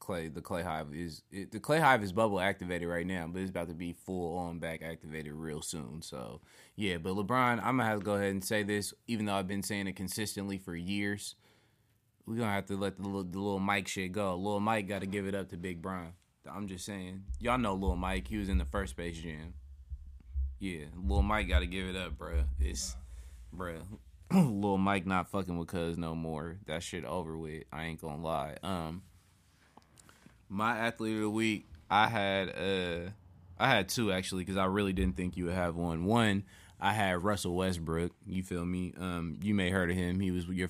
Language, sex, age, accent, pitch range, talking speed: English, male, 20-39, American, 85-100 Hz, 215 wpm